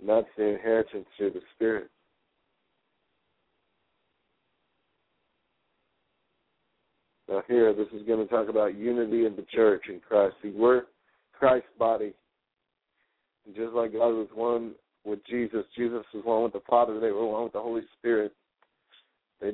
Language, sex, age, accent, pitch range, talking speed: English, male, 50-69, American, 105-120 Hz, 145 wpm